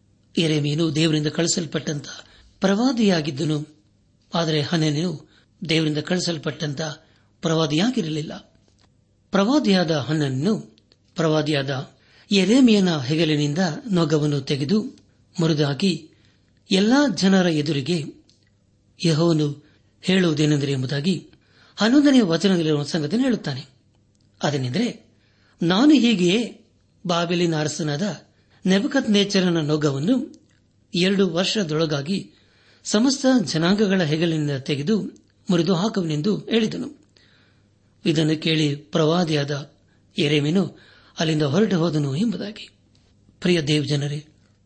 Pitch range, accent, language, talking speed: 140-190 Hz, native, Kannada, 75 wpm